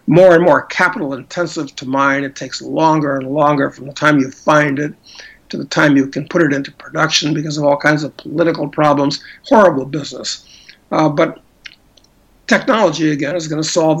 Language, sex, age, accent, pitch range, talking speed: English, male, 60-79, American, 145-175 Hz, 190 wpm